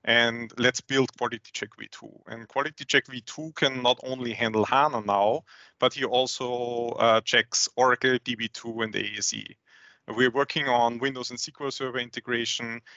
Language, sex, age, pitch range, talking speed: English, male, 30-49, 110-125 Hz, 155 wpm